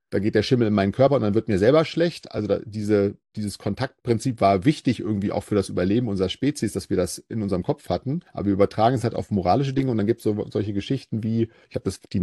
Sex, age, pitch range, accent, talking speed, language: male, 40-59, 95-115 Hz, German, 260 wpm, German